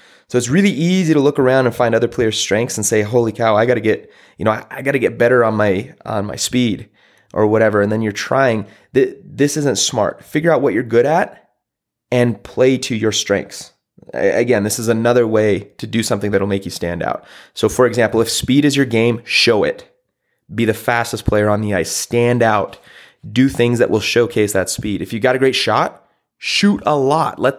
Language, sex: English, male